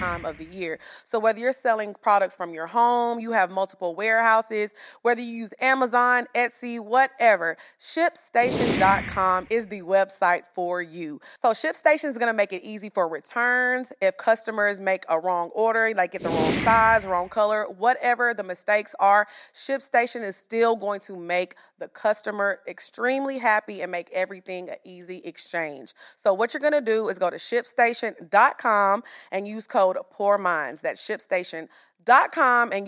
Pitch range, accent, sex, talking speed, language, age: 190-255 Hz, American, female, 160 wpm, English, 30-49